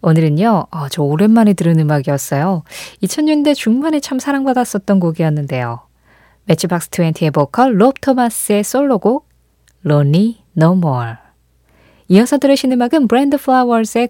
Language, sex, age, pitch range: Korean, female, 20-39, 155-235 Hz